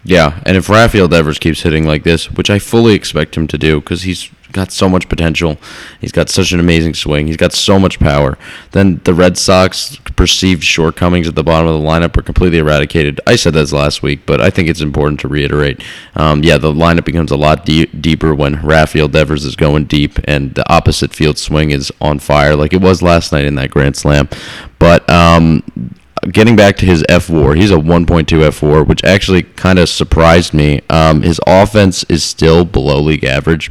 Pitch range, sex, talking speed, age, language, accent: 75-90 Hz, male, 210 wpm, 20-39, English, American